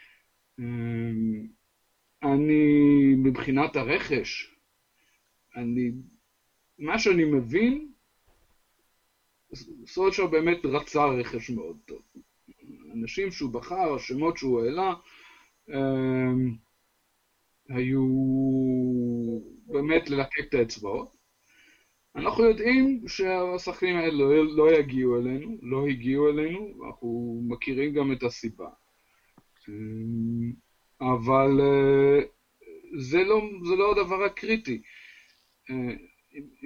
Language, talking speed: Hebrew, 80 wpm